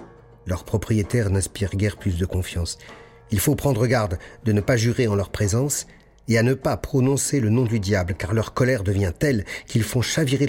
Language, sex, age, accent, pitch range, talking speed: French, male, 50-69, French, 95-125 Hz, 200 wpm